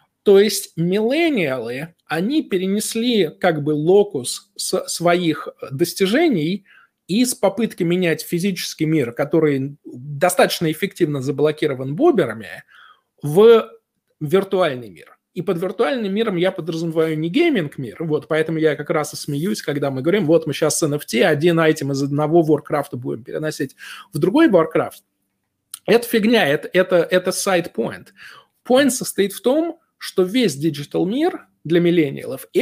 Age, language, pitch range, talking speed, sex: 20-39, Russian, 150-200 Hz, 140 wpm, male